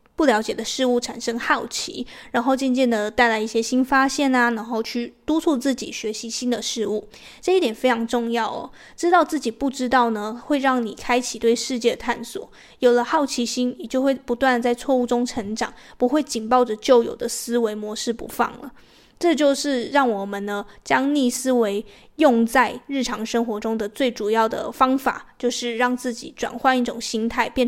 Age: 20-39